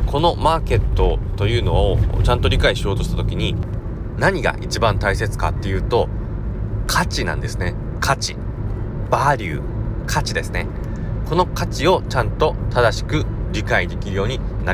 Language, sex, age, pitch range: Japanese, male, 30-49, 95-125 Hz